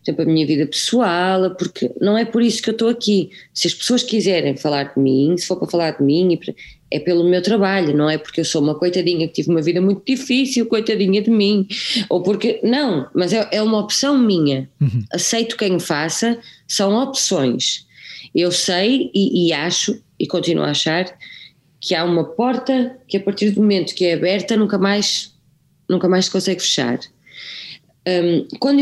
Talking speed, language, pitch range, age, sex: 185 wpm, Portuguese, 165-215 Hz, 20-39, female